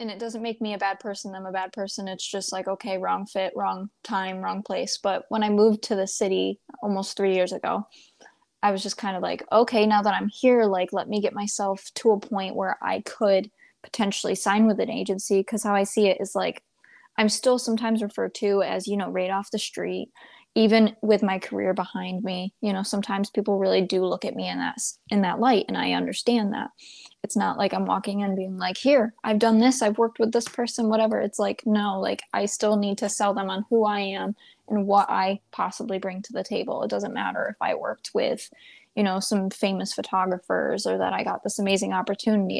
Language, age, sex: English, 20-39, female